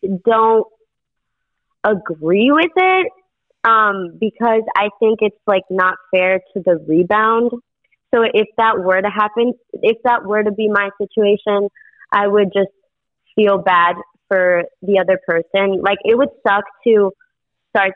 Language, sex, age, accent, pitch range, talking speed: English, female, 20-39, American, 185-220 Hz, 145 wpm